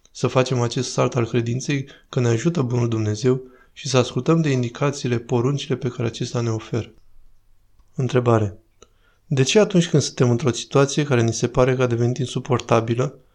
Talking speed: 170 wpm